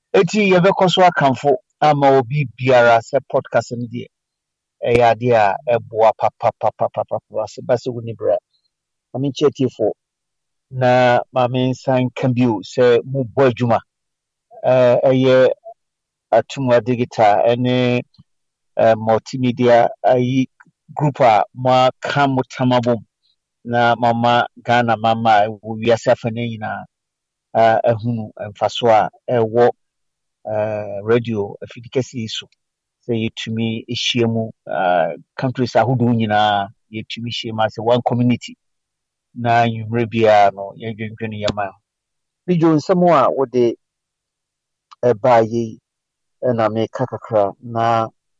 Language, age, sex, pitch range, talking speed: English, 50-69, male, 115-130 Hz, 105 wpm